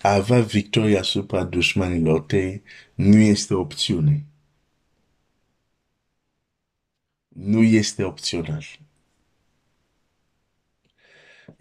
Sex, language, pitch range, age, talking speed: male, Romanian, 90-110 Hz, 50-69, 85 wpm